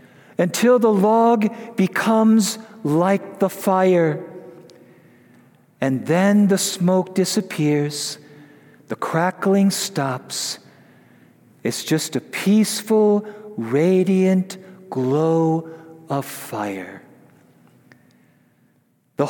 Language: English